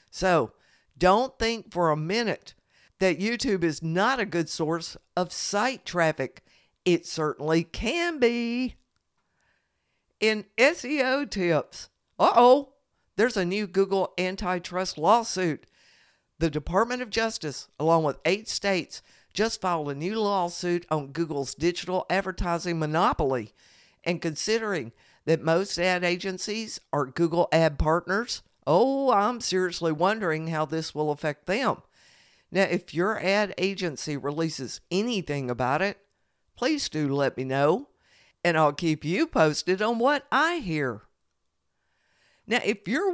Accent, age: American, 50-69